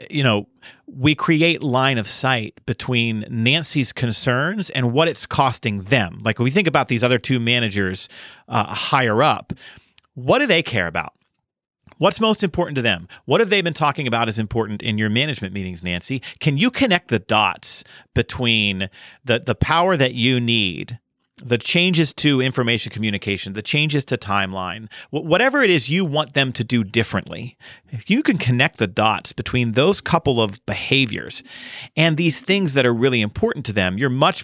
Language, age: English, 40-59